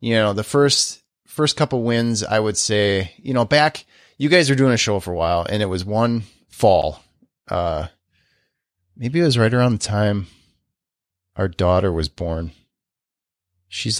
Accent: American